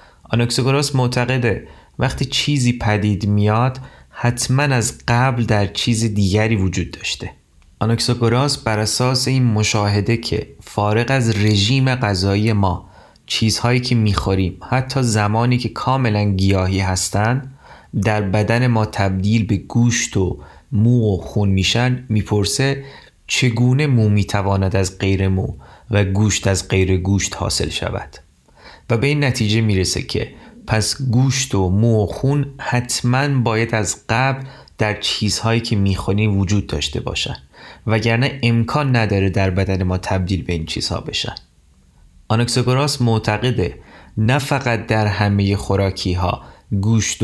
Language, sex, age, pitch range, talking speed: Persian, male, 30-49, 100-125 Hz, 125 wpm